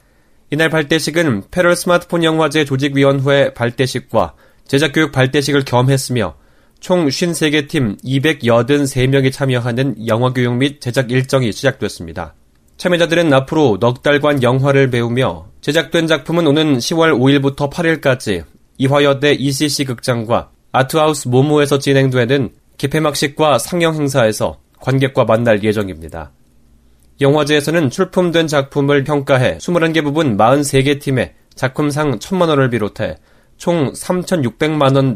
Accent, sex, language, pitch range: native, male, Korean, 120-150 Hz